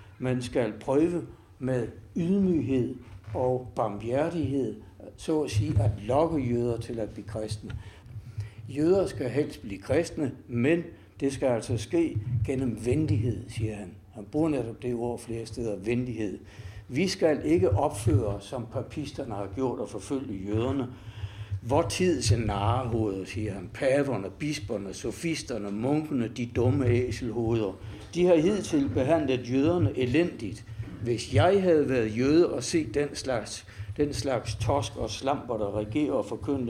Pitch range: 105-140 Hz